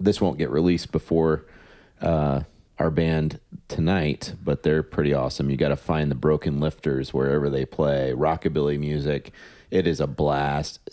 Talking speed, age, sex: 160 wpm, 30-49, male